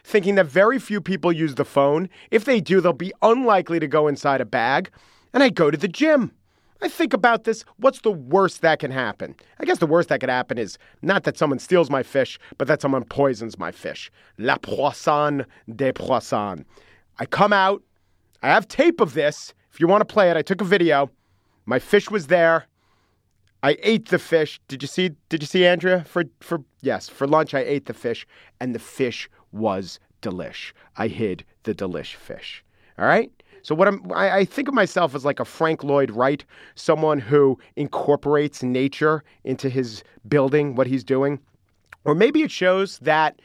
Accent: American